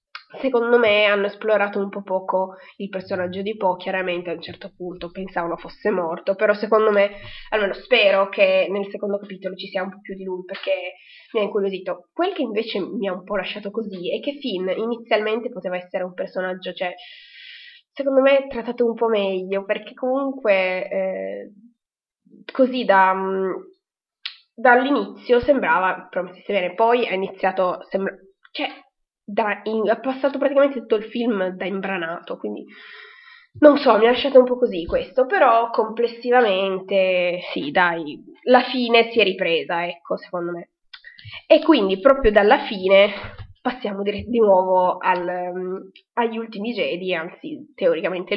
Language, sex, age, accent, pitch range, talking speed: Italian, female, 20-39, native, 185-250 Hz, 155 wpm